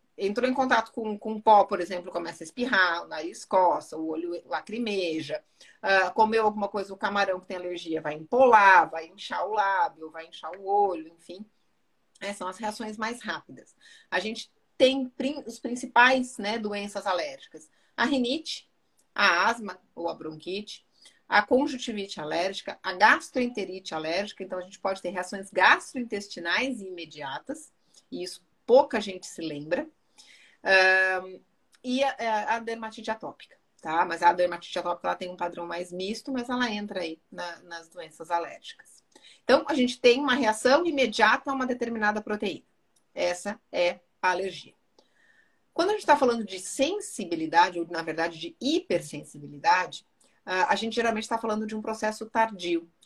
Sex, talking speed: female, 160 wpm